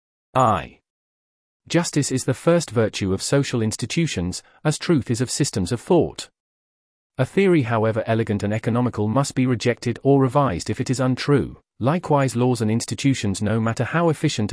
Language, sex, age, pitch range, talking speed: English, male, 40-59, 110-140 Hz, 160 wpm